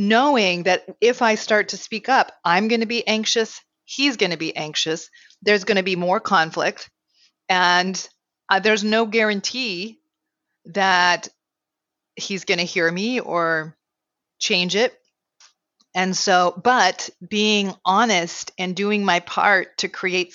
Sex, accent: female, American